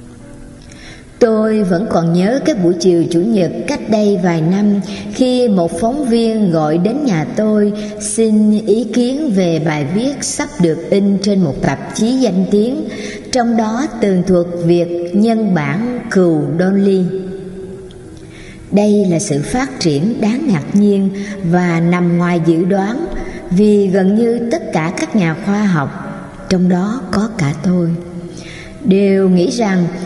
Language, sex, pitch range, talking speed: Vietnamese, male, 170-220 Hz, 150 wpm